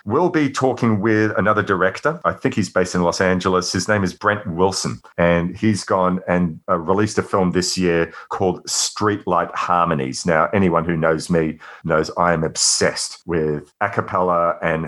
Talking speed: 180 wpm